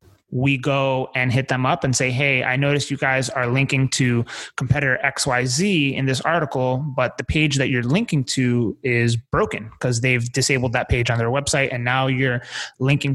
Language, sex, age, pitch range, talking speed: English, male, 20-39, 120-140 Hz, 190 wpm